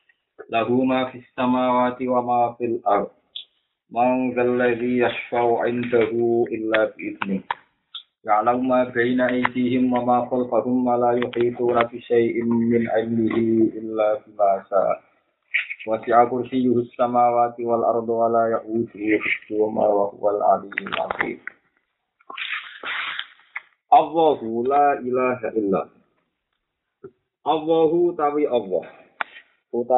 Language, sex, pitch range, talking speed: Indonesian, male, 110-125 Hz, 75 wpm